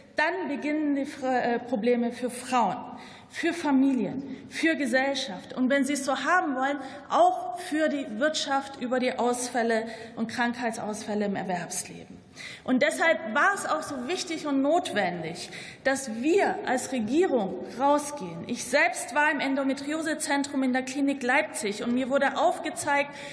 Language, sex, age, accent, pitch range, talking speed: German, female, 30-49, German, 255-310 Hz, 140 wpm